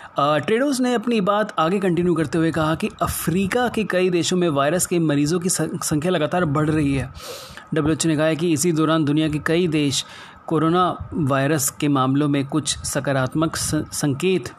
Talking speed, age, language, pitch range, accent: 175 wpm, 30-49, Hindi, 135-165 Hz, native